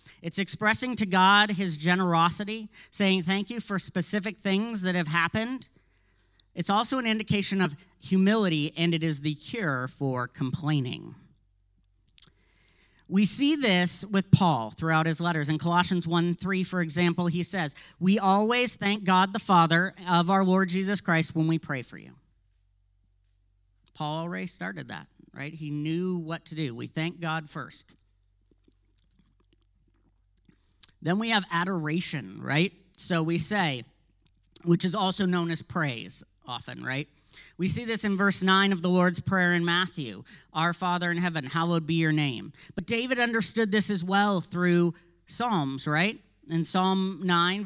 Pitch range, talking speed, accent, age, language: 145-190 Hz, 150 wpm, American, 40-59, English